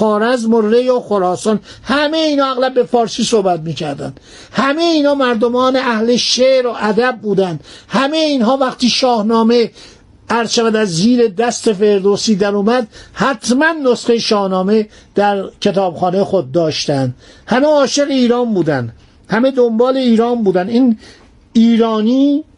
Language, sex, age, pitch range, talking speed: Persian, male, 50-69, 200-245 Hz, 130 wpm